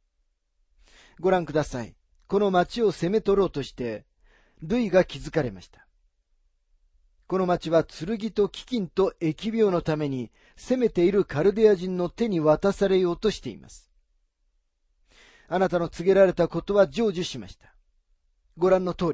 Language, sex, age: Japanese, male, 40-59